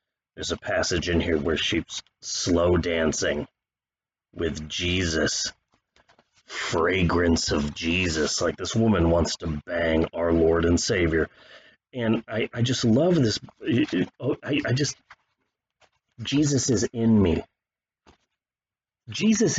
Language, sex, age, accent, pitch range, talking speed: English, male, 30-49, American, 85-110 Hz, 115 wpm